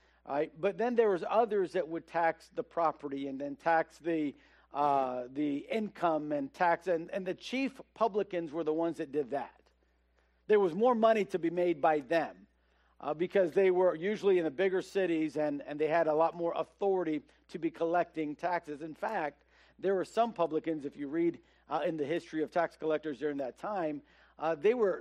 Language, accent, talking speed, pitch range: English, American, 200 wpm, 145-195 Hz